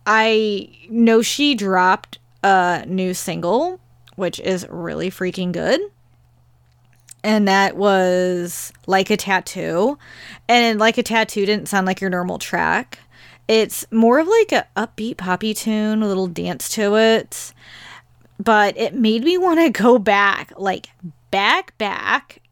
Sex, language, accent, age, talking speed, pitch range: female, English, American, 20-39, 140 wpm, 180-215 Hz